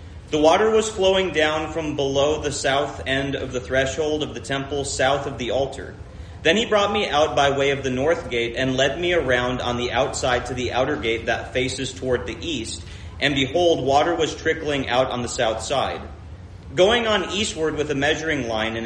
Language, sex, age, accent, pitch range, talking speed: English, male, 30-49, American, 115-160 Hz, 205 wpm